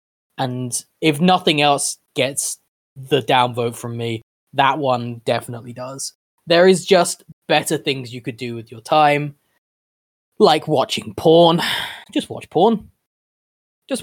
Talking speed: 135 wpm